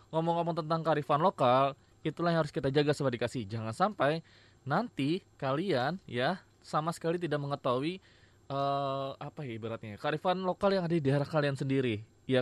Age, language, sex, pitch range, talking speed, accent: 20-39, Indonesian, male, 120-165 Hz, 160 wpm, native